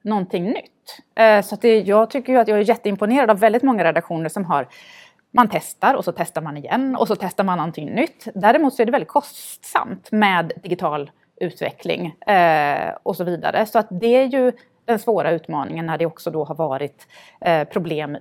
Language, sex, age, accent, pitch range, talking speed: Swedish, female, 30-49, native, 170-220 Hz, 190 wpm